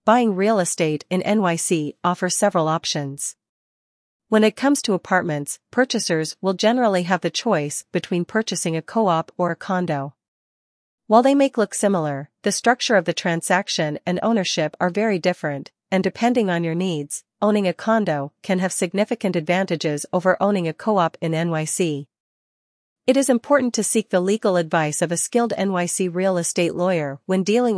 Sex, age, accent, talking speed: female, 40-59, American, 165 wpm